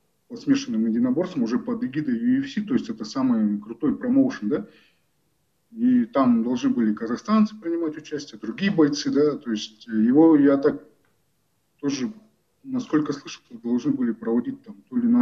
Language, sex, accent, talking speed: Russian, male, native, 155 wpm